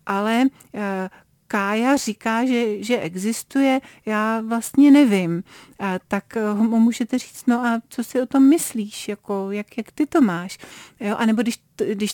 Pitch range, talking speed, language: 190-235 Hz, 145 wpm, Czech